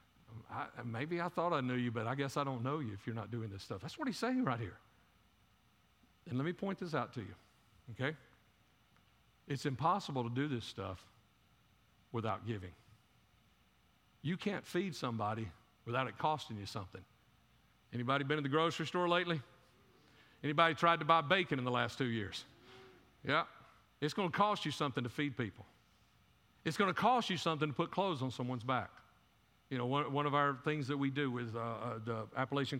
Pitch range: 115-160 Hz